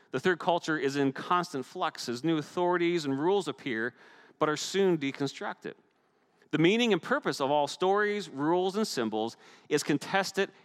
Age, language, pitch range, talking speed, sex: 40-59, English, 120-170 Hz, 165 wpm, male